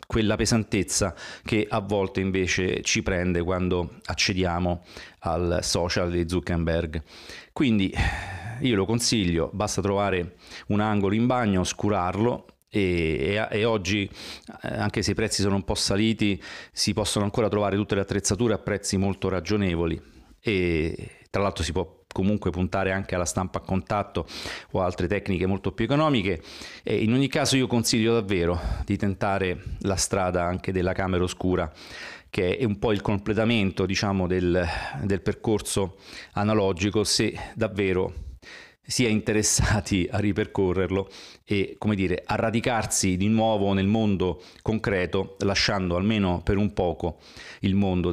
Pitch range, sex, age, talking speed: 90-105 Hz, male, 40-59, 145 wpm